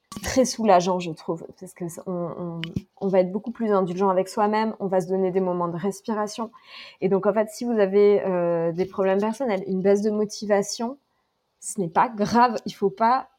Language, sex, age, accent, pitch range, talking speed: French, female, 20-39, French, 185-230 Hz, 205 wpm